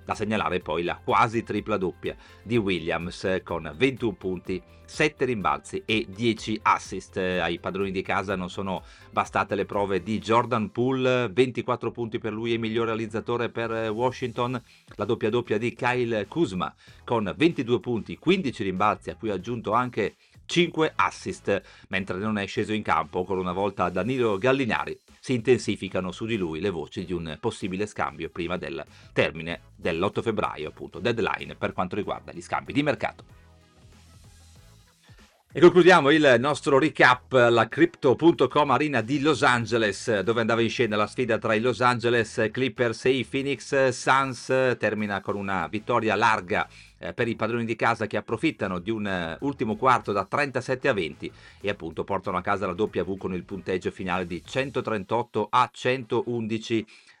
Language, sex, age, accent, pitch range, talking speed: Italian, male, 40-59, native, 100-125 Hz, 160 wpm